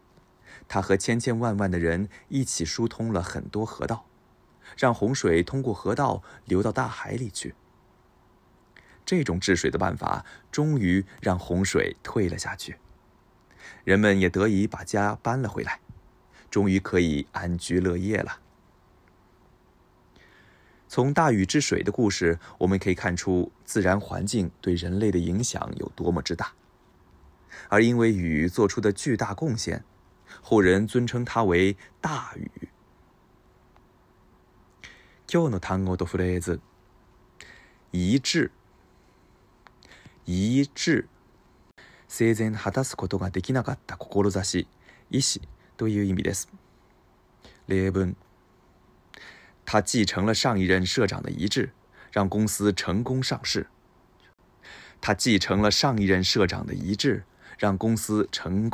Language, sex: Japanese, male